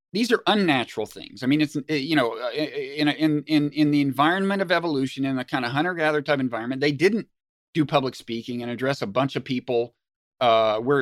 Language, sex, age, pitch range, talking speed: English, male, 40-59, 135-170 Hz, 195 wpm